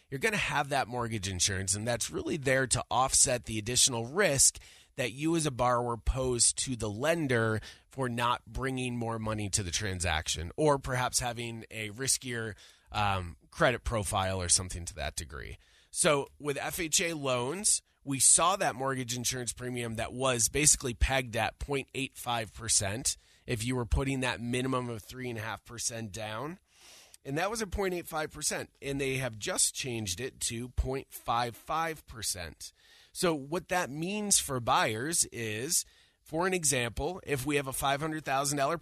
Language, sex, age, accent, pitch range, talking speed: English, male, 30-49, American, 115-140 Hz, 155 wpm